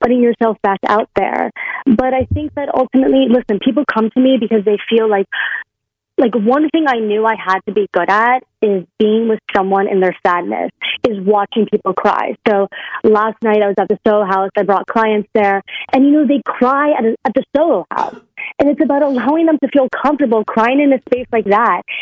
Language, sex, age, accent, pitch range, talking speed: English, female, 30-49, American, 210-275 Hz, 215 wpm